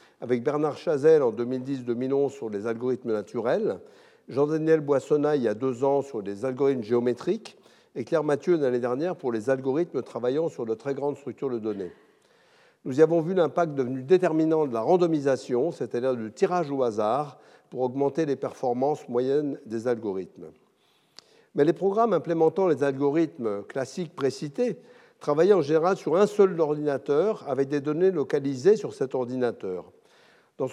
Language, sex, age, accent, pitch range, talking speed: French, male, 60-79, French, 135-185 Hz, 160 wpm